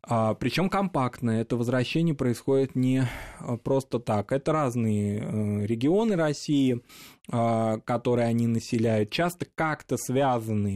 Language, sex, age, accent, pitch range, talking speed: Russian, male, 20-39, native, 115-140 Hz, 100 wpm